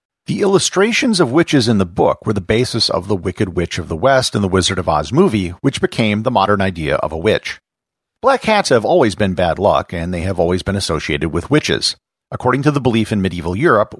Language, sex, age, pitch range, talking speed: English, male, 50-69, 90-135 Hz, 225 wpm